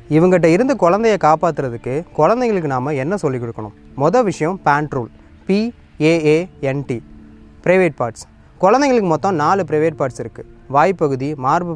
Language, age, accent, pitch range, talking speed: Tamil, 20-39, native, 135-195 Hz, 130 wpm